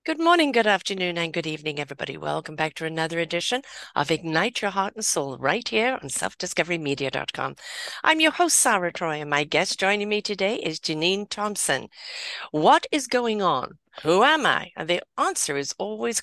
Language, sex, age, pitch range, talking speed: English, female, 50-69, 170-240 Hz, 180 wpm